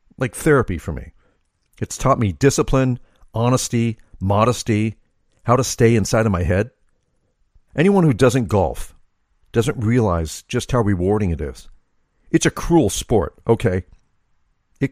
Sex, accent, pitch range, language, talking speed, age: male, American, 90-120 Hz, English, 135 wpm, 50-69